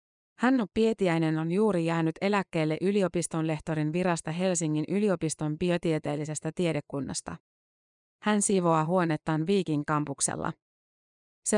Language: Finnish